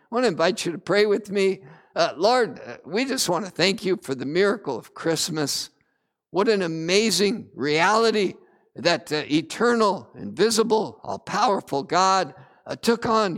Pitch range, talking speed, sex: 175-225 Hz, 160 wpm, male